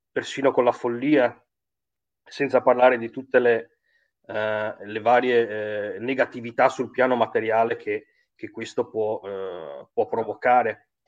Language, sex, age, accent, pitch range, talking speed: Italian, male, 30-49, native, 115-140 Hz, 130 wpm